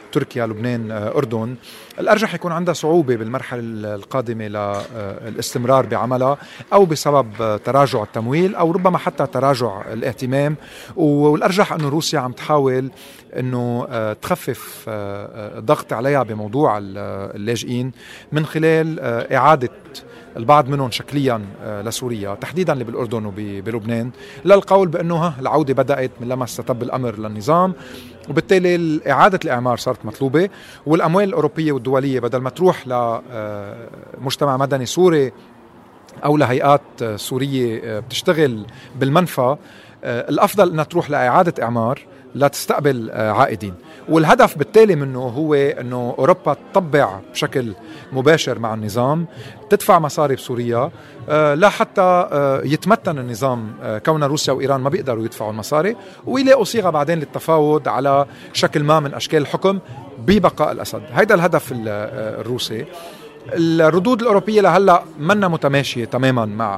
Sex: male